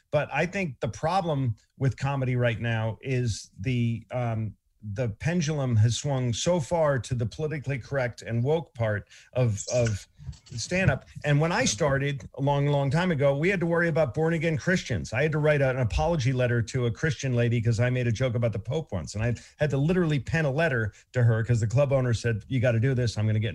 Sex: male